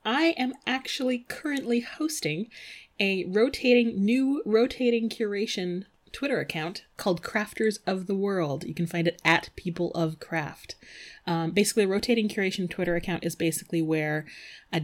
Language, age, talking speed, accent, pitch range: English, 30-49, 145 wpm, American, 165-225 Hz